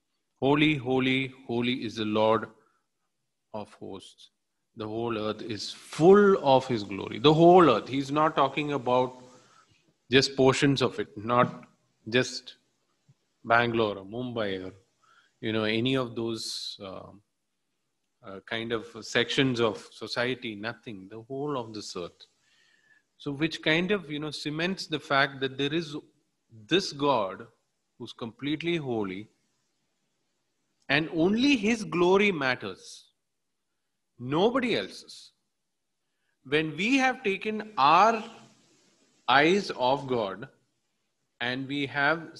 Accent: Indian